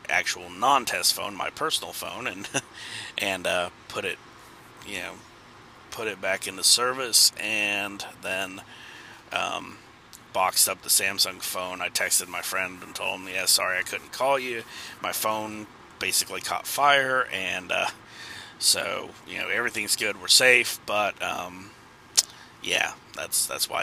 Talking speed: 150 wpm